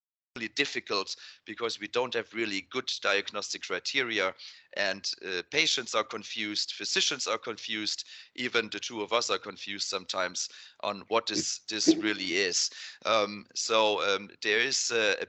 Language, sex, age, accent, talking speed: English, male, 30-49, German, 150 wpm